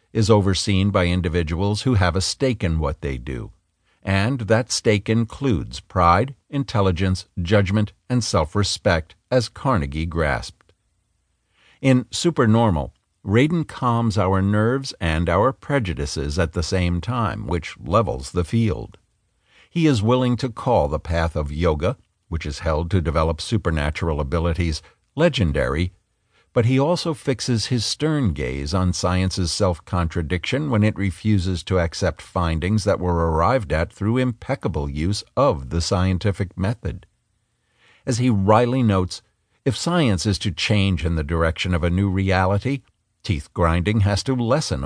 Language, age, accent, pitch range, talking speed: English, 60-79, American, 85-115 Hz, 140 wpm